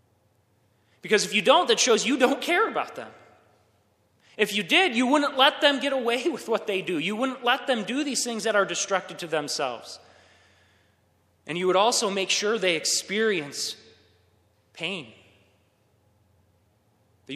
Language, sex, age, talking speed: English, male, 20-39, 160 wpm